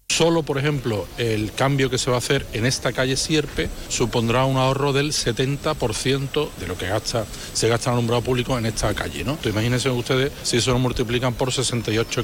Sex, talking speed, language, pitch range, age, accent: male, 200 wpm, Spanish, 130-160 Hz, 40-59, Spanish